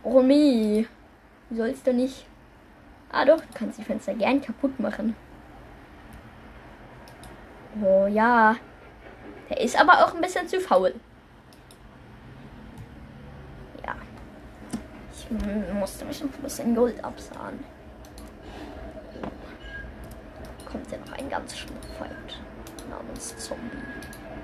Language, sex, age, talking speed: German, female, 10-29, 110 wpm